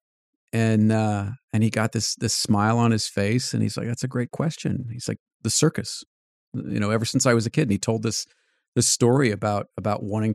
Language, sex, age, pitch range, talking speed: English, male, 40-59, 105-125 Hz, 225 wpm